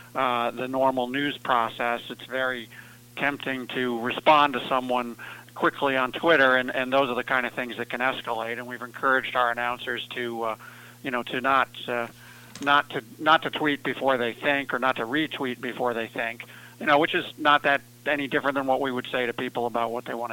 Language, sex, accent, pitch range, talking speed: English, male, American, 120-135 Hz, 215 wpm